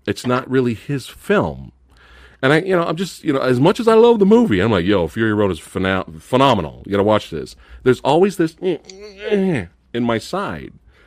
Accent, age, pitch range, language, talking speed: American, 40-59, 90-150 Hz, English, 210 wpm